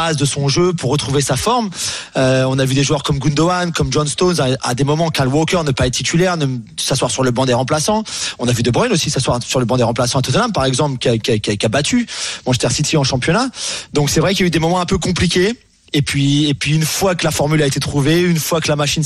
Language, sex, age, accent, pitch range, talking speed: French, male, 30-49, French, 135-165 Hz, 295 wpm